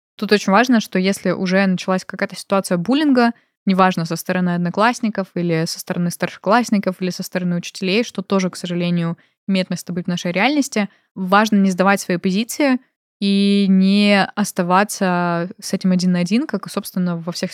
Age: 20-39